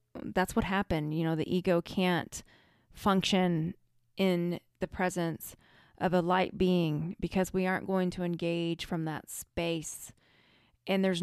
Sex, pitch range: female, 175-205 Hz